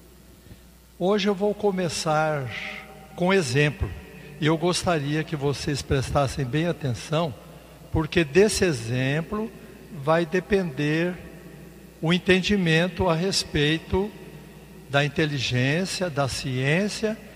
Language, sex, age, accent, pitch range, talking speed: Portuguese, male, 60-79, Brazilian, 145-185 Hz, 95 wpm